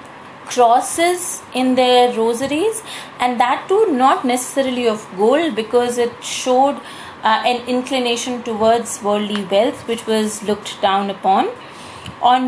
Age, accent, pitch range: 20-39, Indian, 210-255 Hz